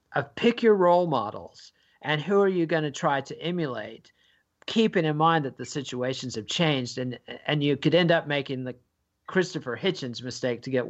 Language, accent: English, American